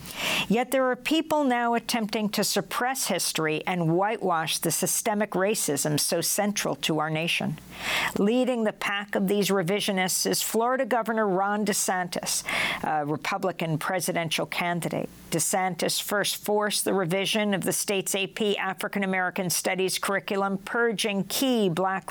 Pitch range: 175-215 Hz